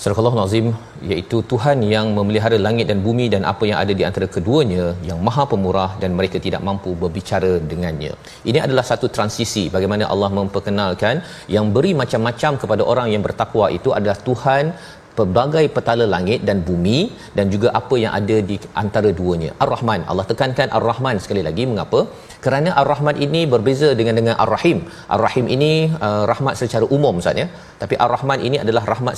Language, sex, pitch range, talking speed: Malayalam, male, 105-135 Hz, 165 wpm